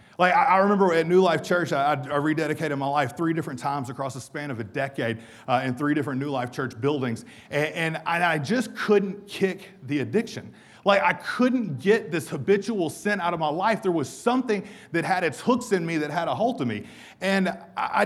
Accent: American